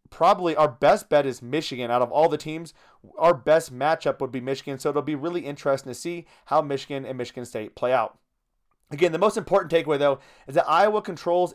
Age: 30-49